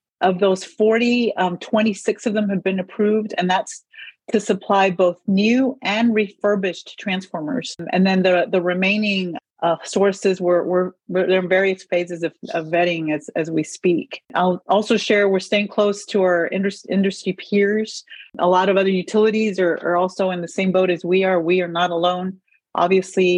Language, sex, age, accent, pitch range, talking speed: English, female, 40-59, American, 175-205 Hz, 180 wpm